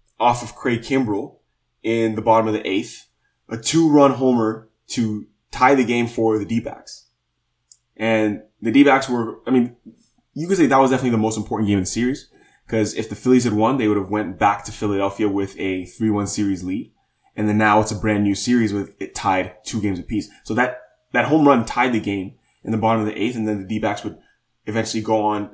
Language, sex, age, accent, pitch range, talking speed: English, male, 20-39, American, 105-125 Hz, 220 wpm